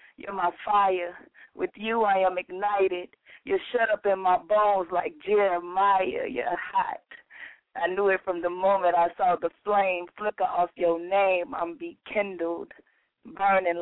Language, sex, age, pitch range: English, female, 30-49, 180-215 Hz